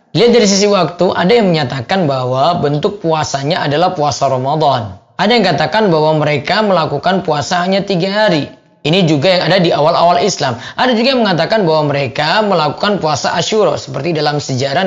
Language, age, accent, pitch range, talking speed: Indonesian, 20-39, native, 150-215 Hz, 165 wpm